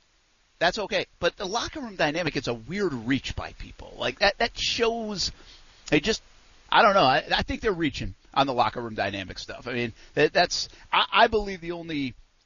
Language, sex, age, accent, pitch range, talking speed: English, male, 50-69, American, 115-185 Hz, 200 wpm